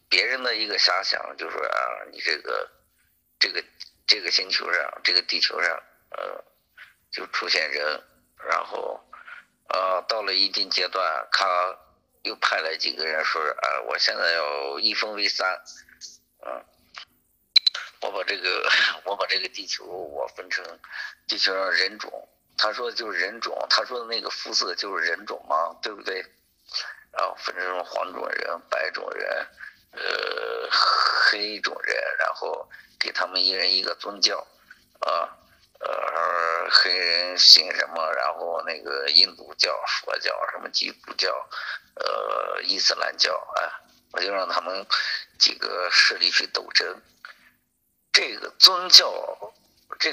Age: 50-69